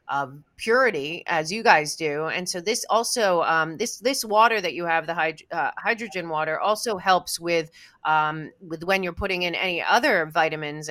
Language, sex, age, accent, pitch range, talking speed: English, female, 30-49, American, 155-185 Hz, 175 wpm